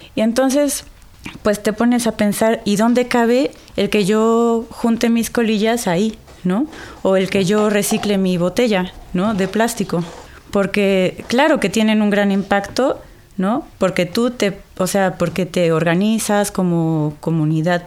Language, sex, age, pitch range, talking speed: Spanish, female, 30-49, 185-225 Hz, 155 wpm